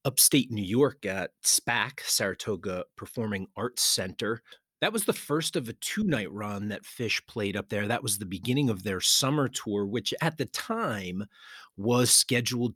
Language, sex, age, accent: English, male, 40-59, American